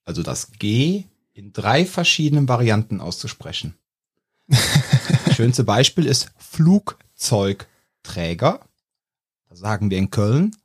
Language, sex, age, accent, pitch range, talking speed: German, male, 40-59, German, 110-165 Hz, 100 wpm